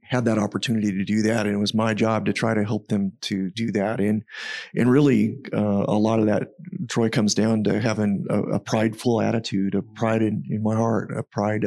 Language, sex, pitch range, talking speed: English, male, 105-115 Hz, 225 wpm